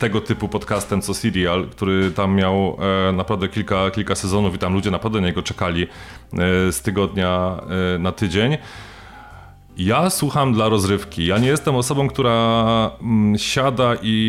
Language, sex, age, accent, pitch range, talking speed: Polish, male, 30-49, native, 95-110 Hz, 145 wpm